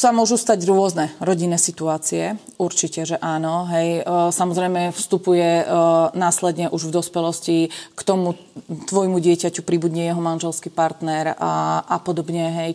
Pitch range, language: 170-195 Hz, Slovak